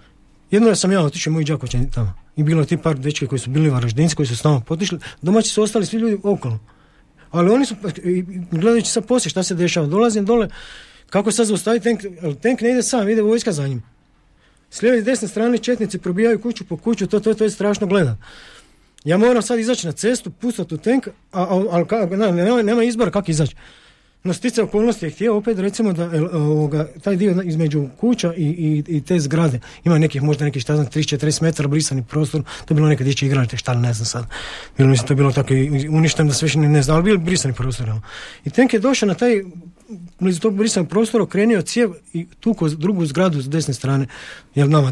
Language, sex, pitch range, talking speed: Croatian, male, 150-220 Hz, 210 wpm